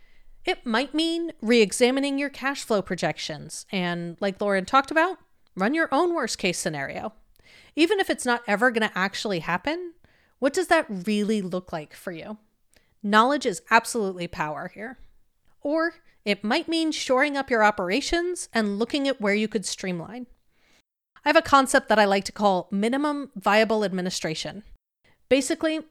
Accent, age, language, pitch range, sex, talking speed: American, 30-49, English, 200-275 Hz, female, 160 wpm